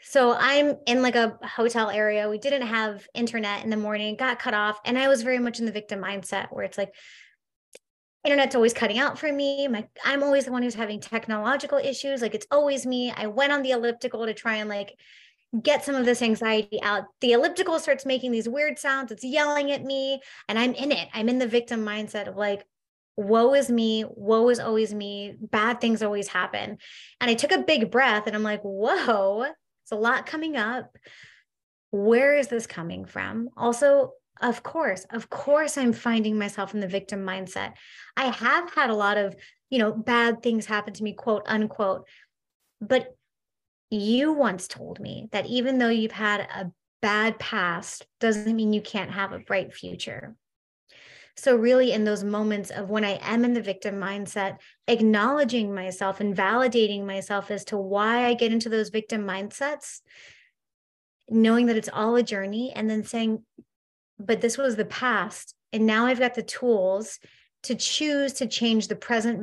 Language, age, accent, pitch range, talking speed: English, 20-39, American, 210-255 Hz, 185 wpm